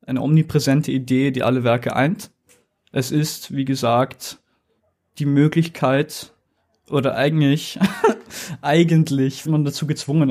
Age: 20-39